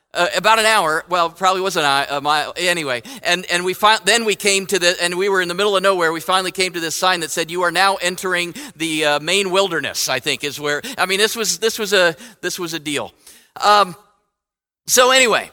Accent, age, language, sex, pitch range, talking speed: American, 50-69, English, male, 170-200 Hz, 240 wpm